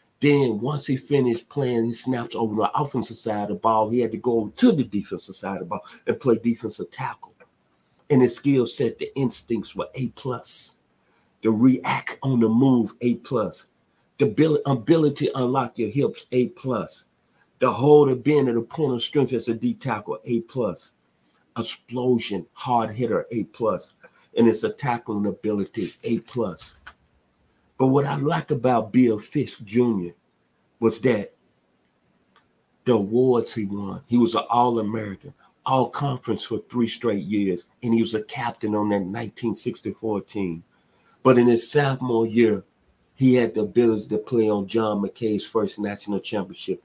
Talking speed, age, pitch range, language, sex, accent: 165 wpm, 50-69, 105-125 Hz, English, male, American